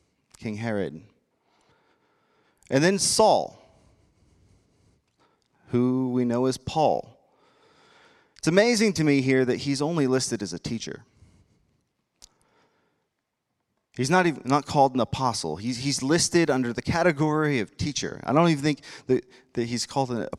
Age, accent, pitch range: 30-49, American, 110-165 Hz